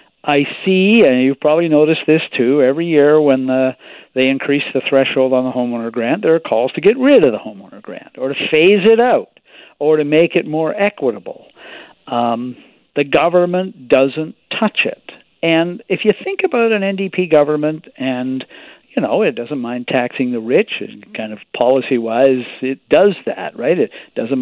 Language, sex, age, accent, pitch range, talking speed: English, male, 60-79, American, 130-180 Hz, 175 wpm